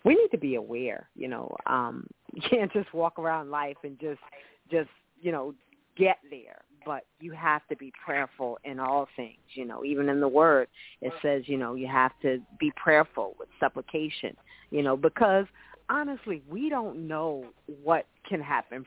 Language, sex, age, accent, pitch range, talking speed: English, female, 40-59, American, 140-190 Hz, 180 wpm